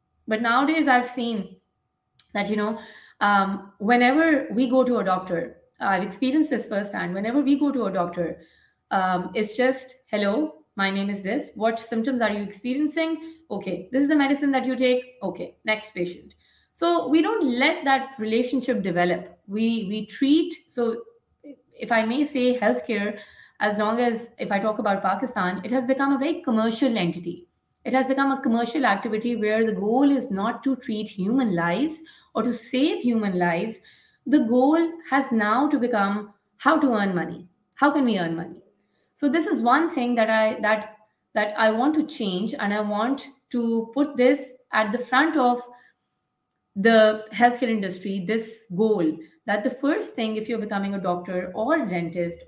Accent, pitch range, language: Indian, 205-265 Hz, English